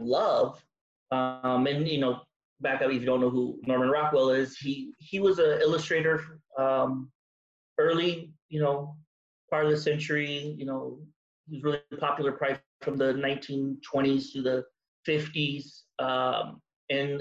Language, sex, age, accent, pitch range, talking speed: English, male, 30-49, American, 135-170 Hz, 145 wpm